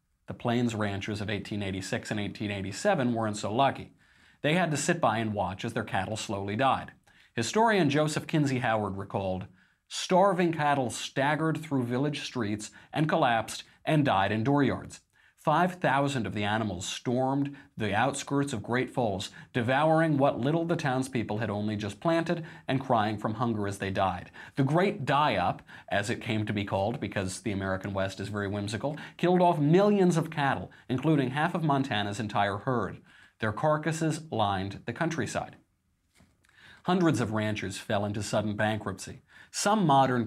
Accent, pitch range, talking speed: American, 105-150 Hz, 160 wpm